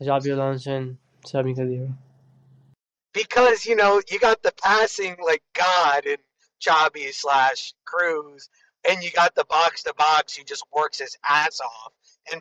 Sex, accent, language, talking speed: male, American, English, 120 wpm